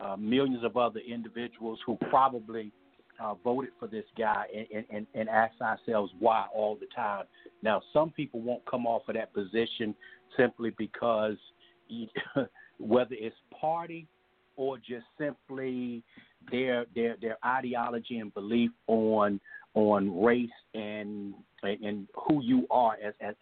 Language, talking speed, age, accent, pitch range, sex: English, 140 wpm, 50-69, American, 105-130 Hz, male